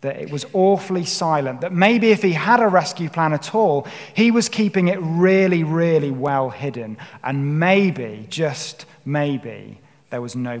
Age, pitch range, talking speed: 30-49, 130-170 Hz, 170 wpm